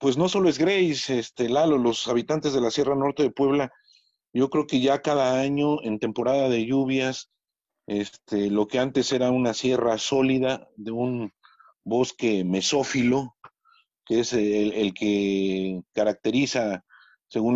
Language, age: Spanish, 40-59